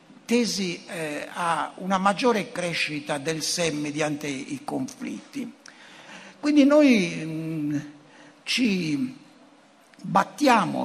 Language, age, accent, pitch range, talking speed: Italian, 60-79, native, 160-245 Hz, 75 wpm